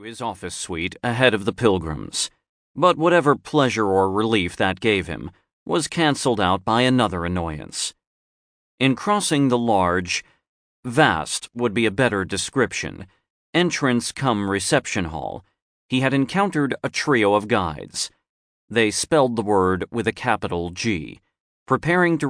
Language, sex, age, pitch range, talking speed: English, male, 40-59, 95-135 Hz, 140 wpm